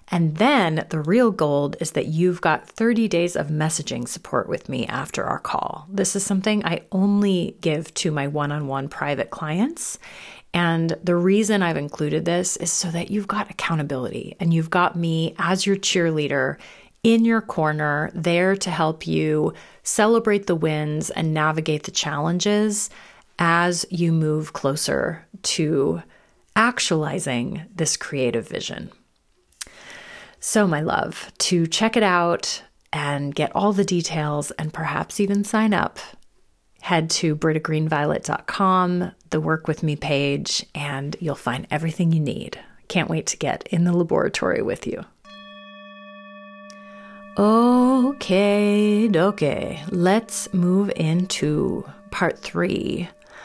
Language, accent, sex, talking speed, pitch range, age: English, American, female, 135 wpm, 155-195 Hz, 30-49